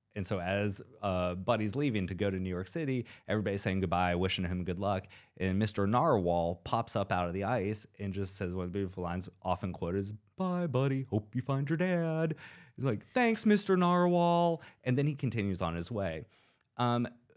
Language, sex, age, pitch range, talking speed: English, male, 30-49, 90-120 Hz, 200 wpm